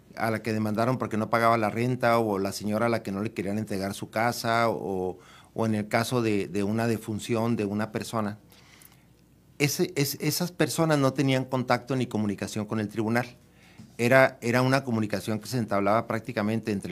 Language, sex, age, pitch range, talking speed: Spanish, male, 50-69, 105-130 Hz, 190 wpm